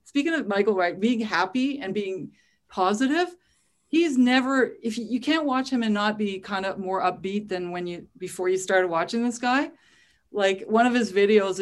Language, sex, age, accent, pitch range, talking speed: English, female, 40-59, American, 185-250 Hz, 195 wpm